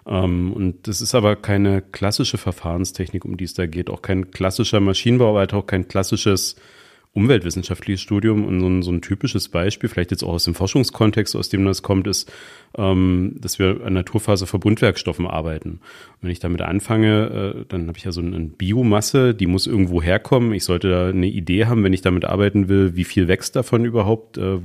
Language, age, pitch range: German, 40-59, 90-105 Hz